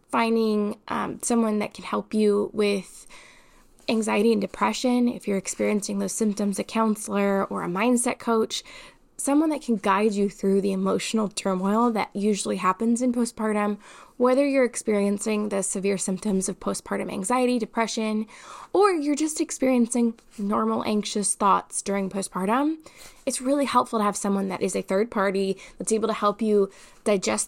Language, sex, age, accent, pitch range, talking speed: English, female, 10-29, American, 200-250 Hz, 155 wpm